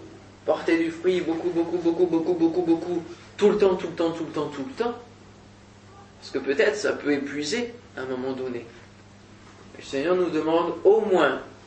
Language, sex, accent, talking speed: French, male, French, 190 wpm